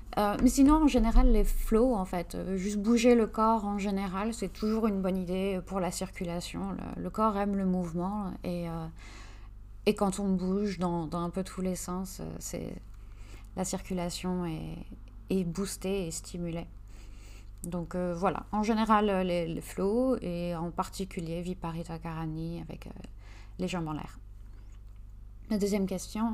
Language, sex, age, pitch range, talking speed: French, female, 30-49, 160-210 Hz, 165 wpm